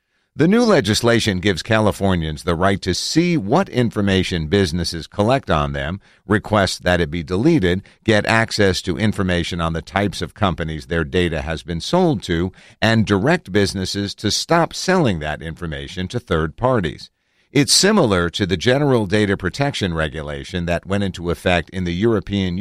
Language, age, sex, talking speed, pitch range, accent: English, 50-69, male, 160 wpm, 85-110 Hz, American